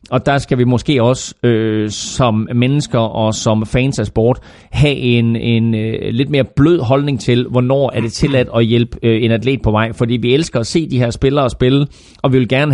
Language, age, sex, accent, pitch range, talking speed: Danish, 30-49, male, native, 115-140 Hz, 220 wpm